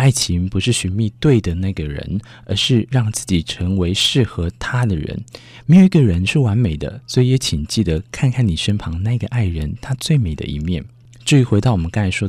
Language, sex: Chinese, male